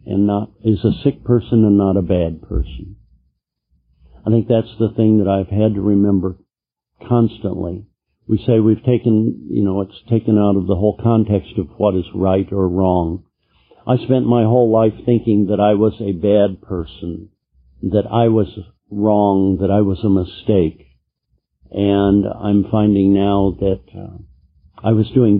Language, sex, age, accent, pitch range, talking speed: English, male, 60-79, American, 85-115 Hz, 170 wpm